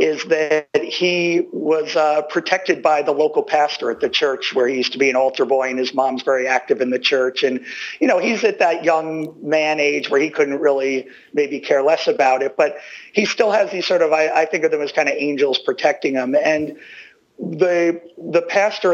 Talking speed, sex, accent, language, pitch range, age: 220 wpm, male, American, English, 140-185 Hz, 50-69